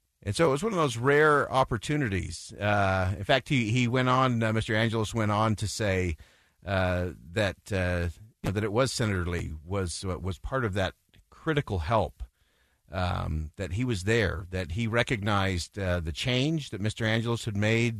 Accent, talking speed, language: American, 180 wpm, English